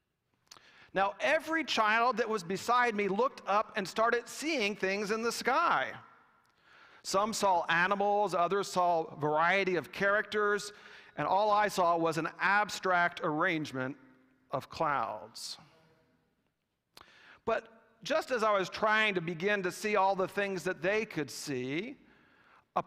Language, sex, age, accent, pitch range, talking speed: English, male, 40-59, American, 160-215 Hz, 140 wpm